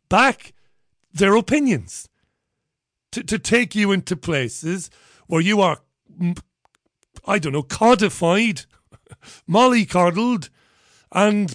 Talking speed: 95 wpm